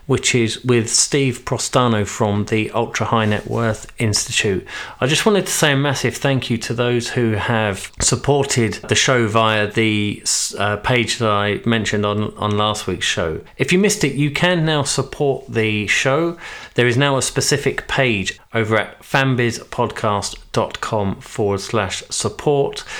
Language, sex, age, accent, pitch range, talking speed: English, male, 40-59, British, 105-130 Hz, 160 wpm